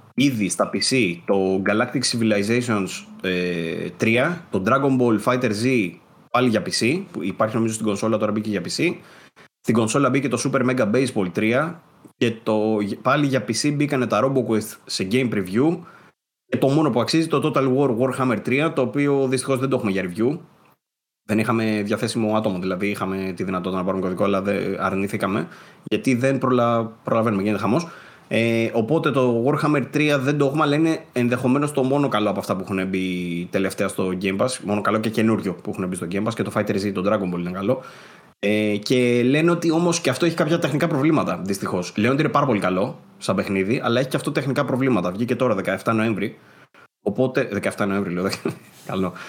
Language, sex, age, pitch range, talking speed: Greek, male, 30-49, 105-135 Hz, 190 wpm